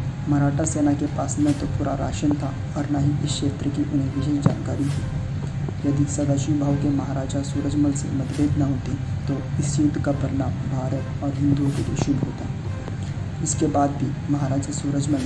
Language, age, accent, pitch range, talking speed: Hindi, 20-39, native, 135-145 Hz, 175 wpm